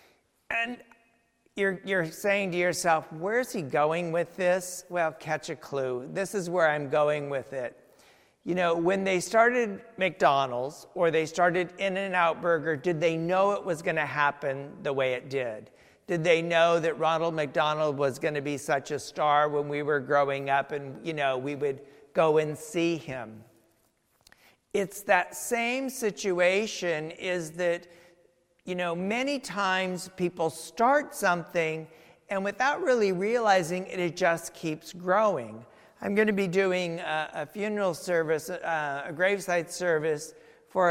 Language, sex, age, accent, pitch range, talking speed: English, male, 50-69, American, 155-195 Hz, 165 wpm